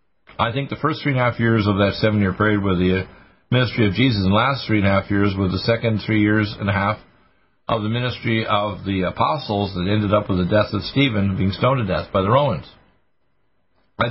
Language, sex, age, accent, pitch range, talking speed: English, male, 50-69, American, 100-120 Hz, 215 wpm